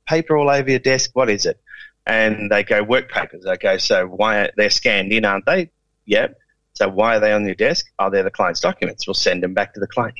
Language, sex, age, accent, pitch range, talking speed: English, male, 30-49, Australian, 115-160 Hz, 255 wpm